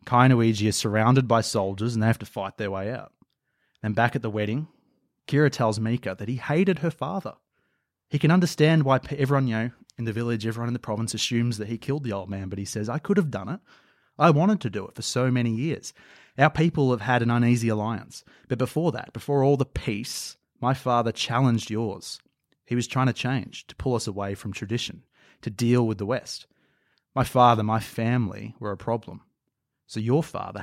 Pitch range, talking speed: 110-130 Hz, 210 wpm